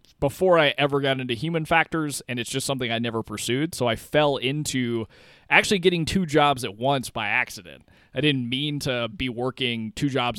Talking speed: 195 wpm